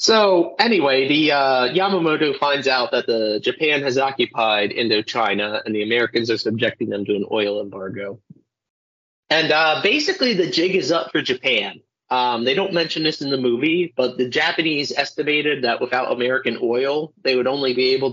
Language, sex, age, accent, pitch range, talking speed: English, male, 30-49, American, 115-155 Hz, 175 wpm